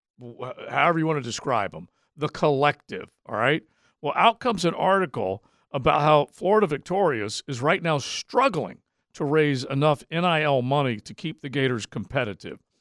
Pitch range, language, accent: 125-155 Hz, English, American